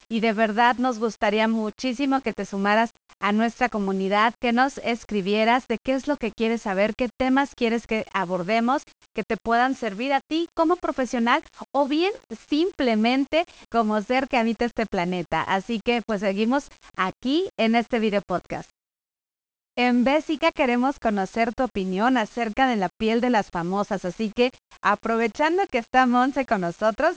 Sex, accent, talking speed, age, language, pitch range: female, Mexican, 165 wpm, 30-49, Spanish, 210-255 Hz